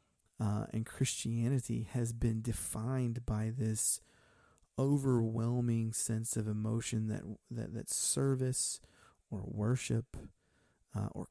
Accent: American